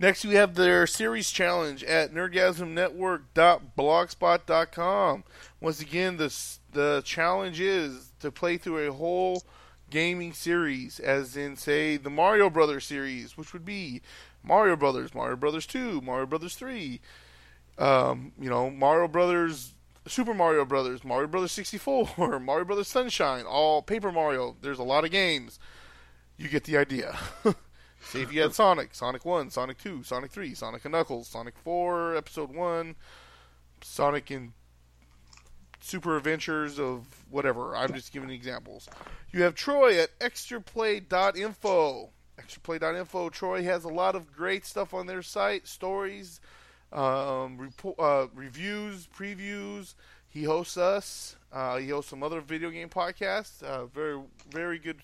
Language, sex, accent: English, male, American